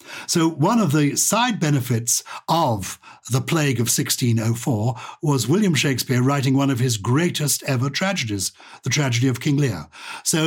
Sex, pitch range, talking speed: male, 125-195 Hz, 155 wpm